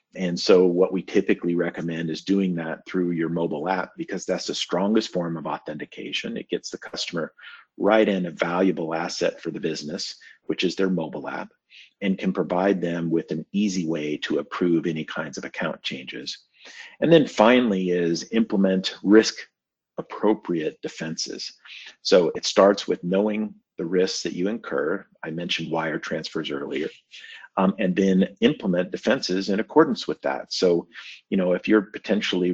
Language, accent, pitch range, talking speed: English, American, 85-100 Hz, 165 wpm